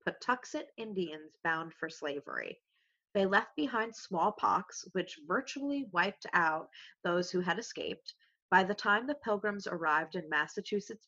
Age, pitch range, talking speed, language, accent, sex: 30-49, 175-225 Hz, 135 wpm, English, American, female